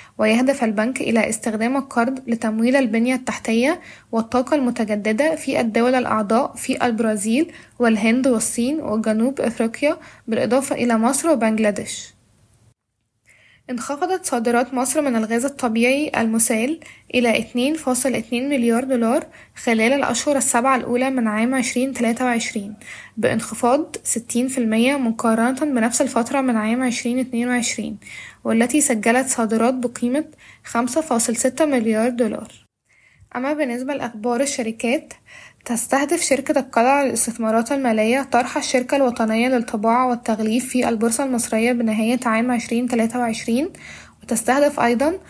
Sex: female